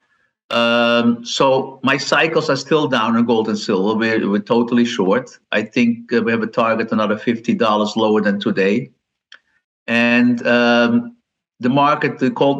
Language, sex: English, male